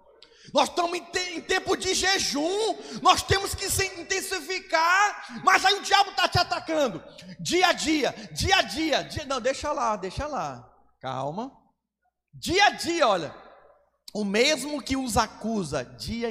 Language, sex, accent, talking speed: Portuguese, male, Brazilian, 145 wpm